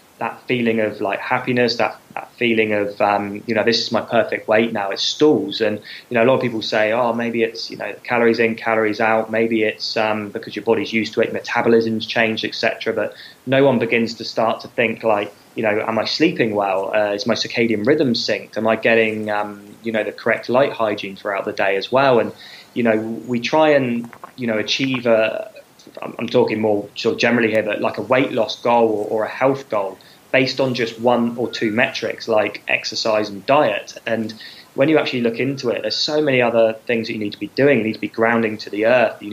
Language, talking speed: English, 230 wpm